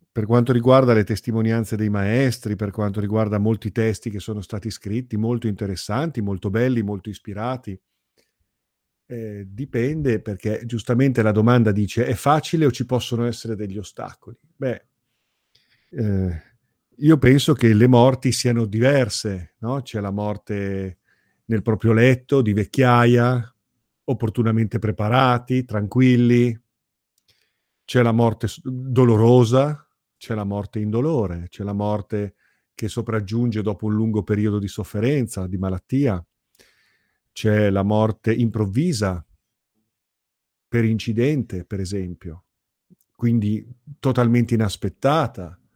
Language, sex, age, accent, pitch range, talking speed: Italian, male, 50-69, native, 105-125 Hz, 120 wpm